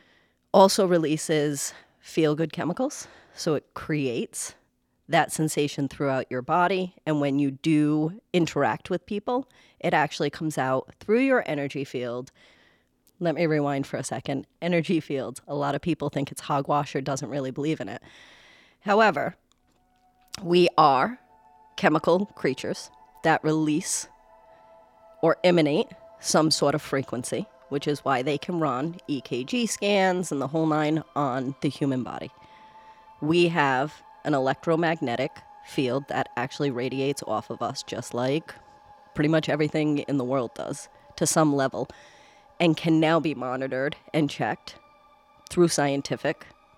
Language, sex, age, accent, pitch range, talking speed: English, female, 30-49, American, 140-190 Hz, 140 wpm